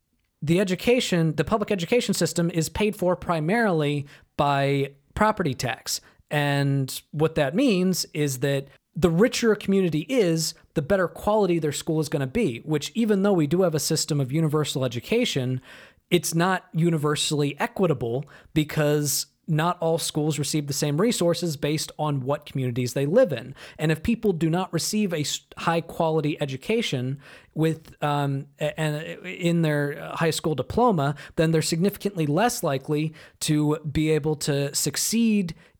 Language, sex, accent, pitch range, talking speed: English, male, American, 145-180 Hz, 155 wpm